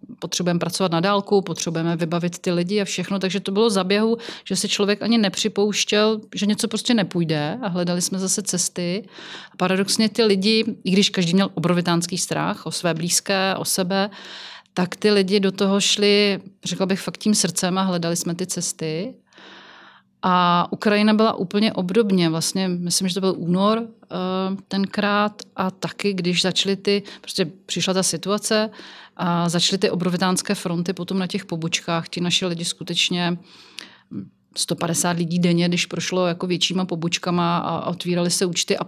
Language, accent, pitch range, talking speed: Czech, native, 175-205 Hz, 165 wpm